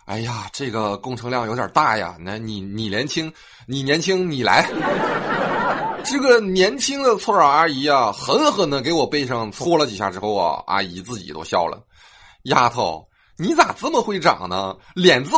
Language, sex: Chinese, male